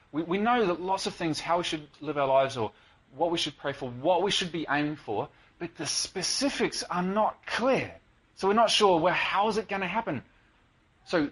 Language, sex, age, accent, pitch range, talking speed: English, male, 30-49, Australian, 115-180 Hz, 215 wpm